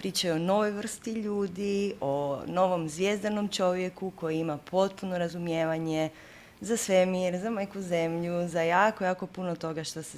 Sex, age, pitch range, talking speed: female, 20-39, 155-195 Hz, 145 wpm